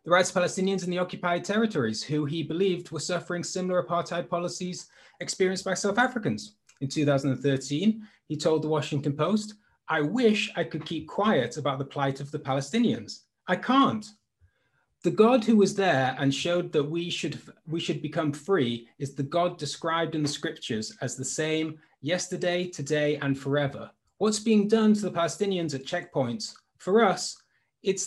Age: 30-49